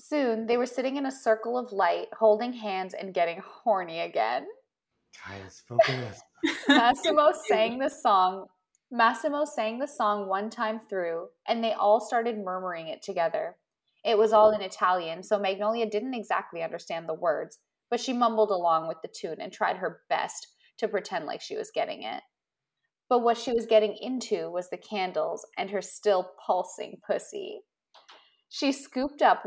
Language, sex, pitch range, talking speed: English, female, 190-245 Hz, 160 wpm